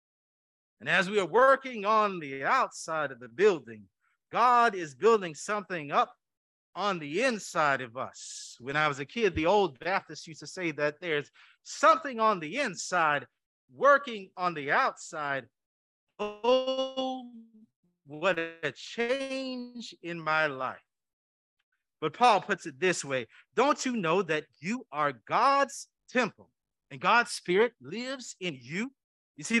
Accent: American